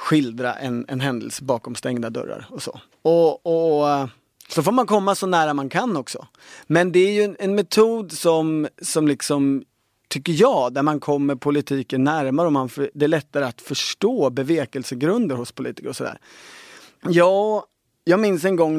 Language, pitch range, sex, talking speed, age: Swedish, 130-165 Hz, male, 180 wpm, 30-49